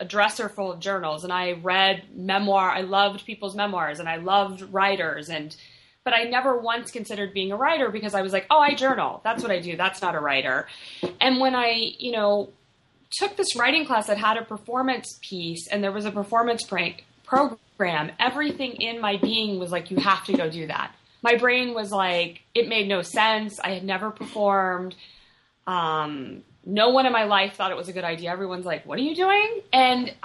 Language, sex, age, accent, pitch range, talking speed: English, female, 20-39, American, 180-235 Hz, 210 wpm